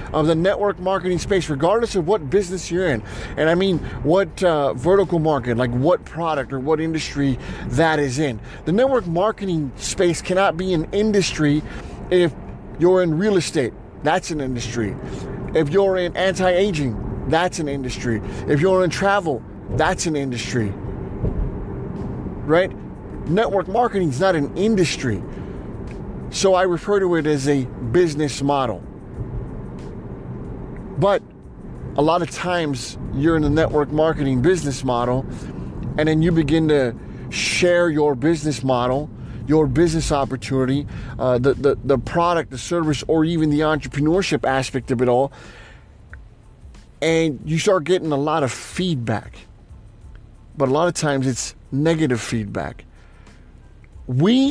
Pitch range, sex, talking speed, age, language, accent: 130-175 Hz, male, 145 wpm, 30-49, English, American